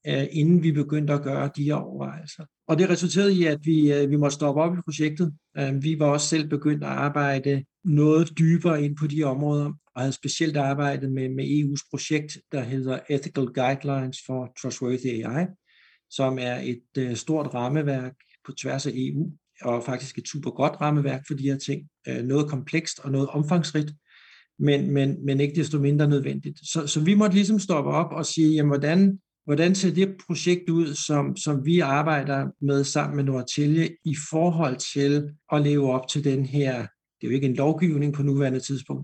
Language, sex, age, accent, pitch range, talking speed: Danish, male, 60-79, native, 140-160 Hz, 185 wpm